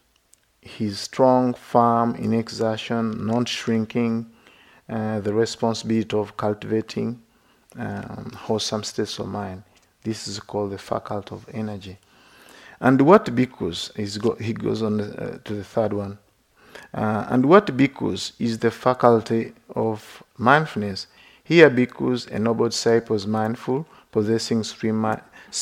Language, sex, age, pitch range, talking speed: English, male, 50-69, 105-120 Hz, 125 wpm